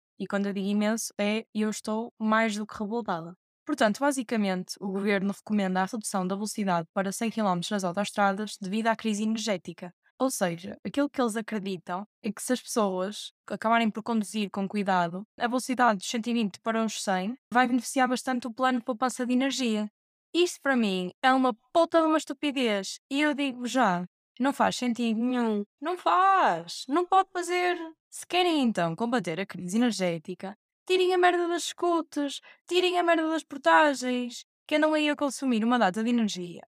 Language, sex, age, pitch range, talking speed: Portuguese, female, 20-39, 205-280 Hz, 180 wpm